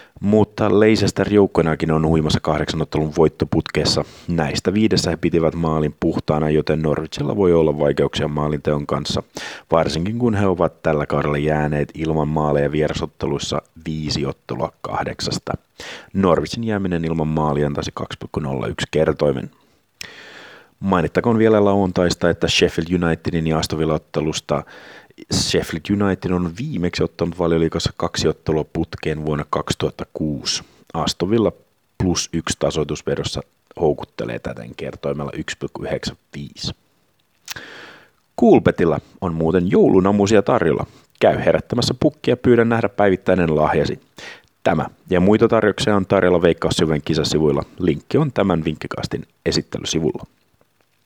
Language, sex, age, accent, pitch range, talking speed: Finnish, male, 30-49, native, 75-100 Hz, 110 wpm